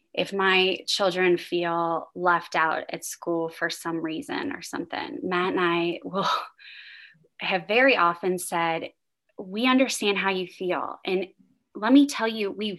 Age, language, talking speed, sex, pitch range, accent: 20-39, English, 150 wpm, female, 175-240 Hz, American